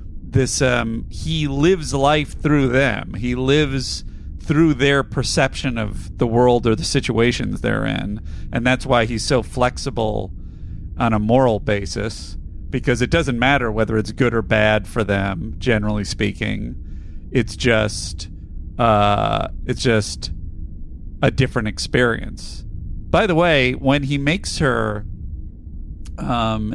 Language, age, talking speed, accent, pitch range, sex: English, 40-59, 130 wpm, American, 85-125 Hz, male